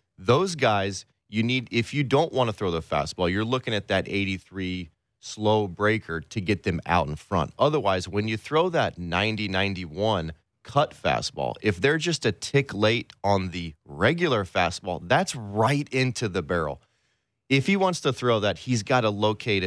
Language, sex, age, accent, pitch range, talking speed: English, male, 30-49, American, 95-115 Hz, 175 wpm